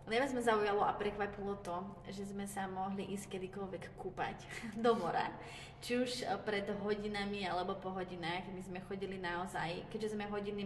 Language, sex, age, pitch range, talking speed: Slovak, female, 20-39, 185-205 Hz, 170 wpm